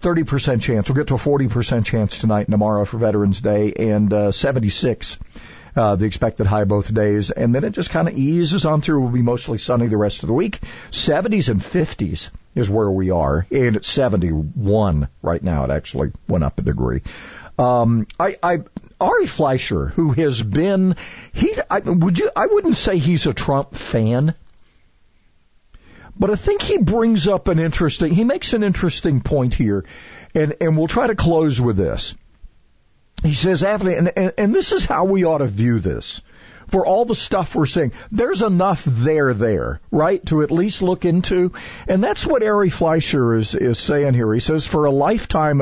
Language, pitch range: English, 110-170 Hz